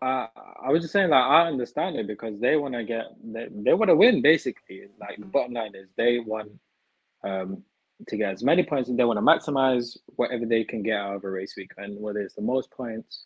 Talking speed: 240 wpm